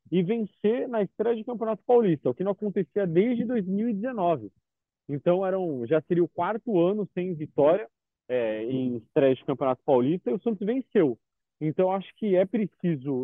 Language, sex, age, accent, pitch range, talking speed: Portuguese, male, 30-49, Brazilian, 150-205 Hz, 165 wpm